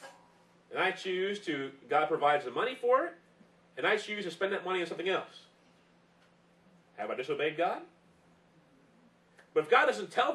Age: 40-59